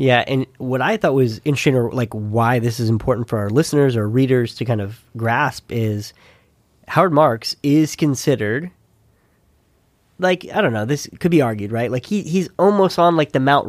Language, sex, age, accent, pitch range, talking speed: English, male, 20-39, American, 115-150 Hz, 195 wpm